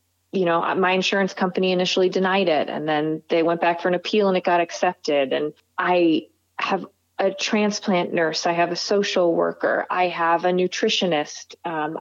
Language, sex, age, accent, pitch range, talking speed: English, female, 30-49, American, 170-195 Hz, 180 wpm